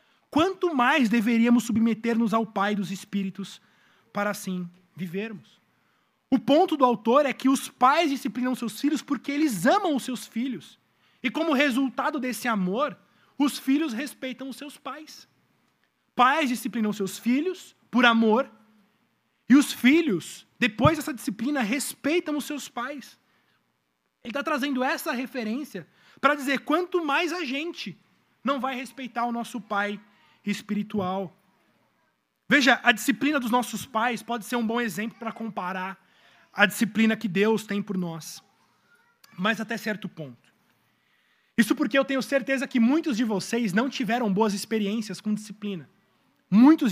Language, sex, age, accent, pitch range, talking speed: Portuguese, male, 20-39, Brazilian, 205-270 Hz, 145 wpm